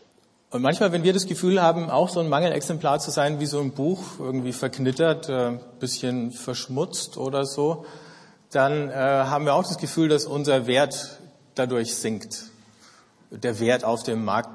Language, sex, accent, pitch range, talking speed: German, male, German, 125-150 Hz, 165 wpm